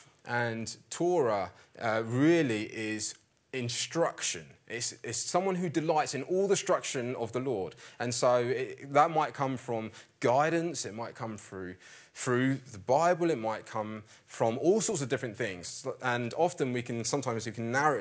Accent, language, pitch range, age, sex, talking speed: British, English, 110-145 Hz, 20-39, male, 165 wpm